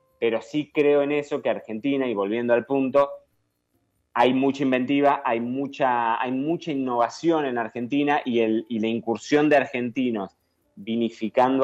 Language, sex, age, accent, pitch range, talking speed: Spanish, male, 20-39, Argentinian, 100-130 Hz, 150 wpm